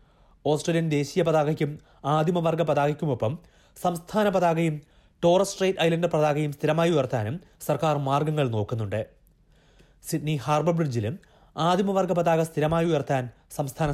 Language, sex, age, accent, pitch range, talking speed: Malayalam, male, 30-49, native, 135-170 Hz, 80 wpm